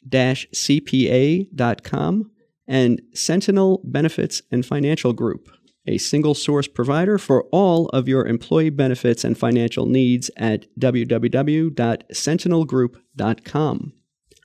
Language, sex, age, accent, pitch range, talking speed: English, male, 40-59, American, 120-165 Hz, 95 wpm